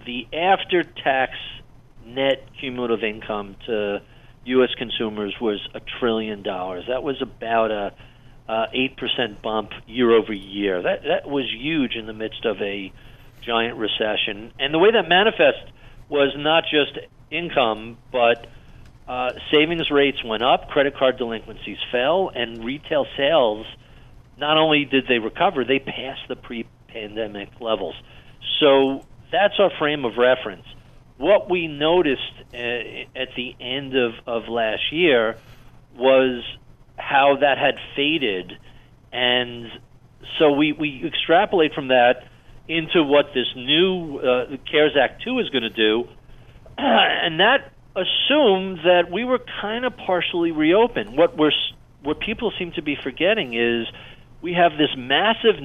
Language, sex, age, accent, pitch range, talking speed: English, male, 50-69, American, 115-145 Hz, 140 wpm